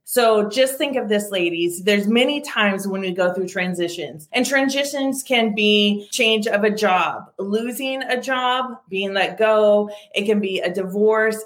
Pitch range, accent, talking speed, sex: 185-225 Hz, American, 175 wpm, female